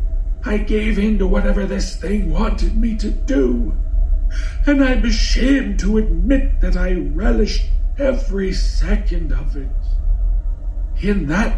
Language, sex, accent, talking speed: English, male, American, 130 wpm